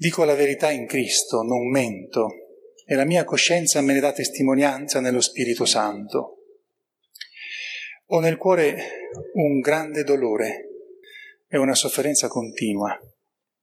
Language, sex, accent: Italian, male, native